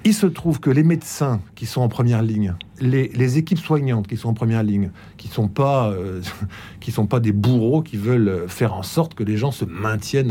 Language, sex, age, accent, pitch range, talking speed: French, male, 50-69, French, 110-165 Hz, 210 wpm